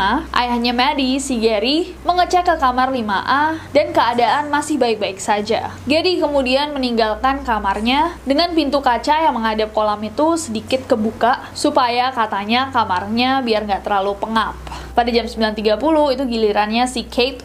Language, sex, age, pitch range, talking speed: Indonesian, female, 20-39, 225-295 Hz, 140 wpm